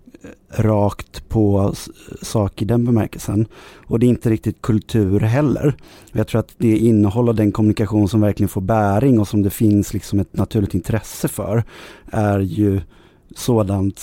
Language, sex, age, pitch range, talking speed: Swedish, male, 30-49, 100-115 Hz, 160 wpm